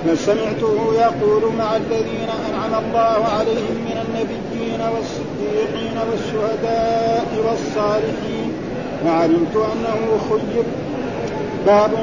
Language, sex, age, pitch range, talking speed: Arabic, male, 50-69, 215-230 Hz, 85 wpm